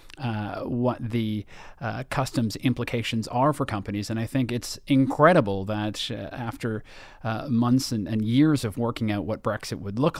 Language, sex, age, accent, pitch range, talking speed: English, male, 30-49, American, 110-125 Hz, 170 wpm